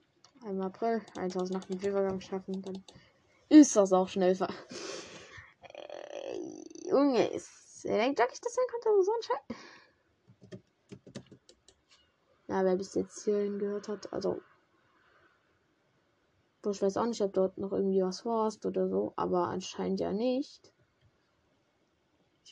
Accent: German